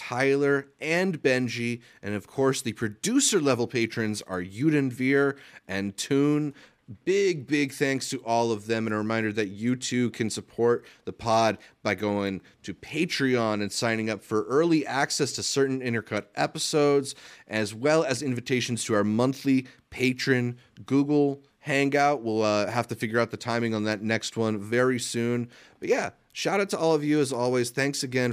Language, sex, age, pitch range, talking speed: English, male, 30-49, 110-135 Hz, 170 wpm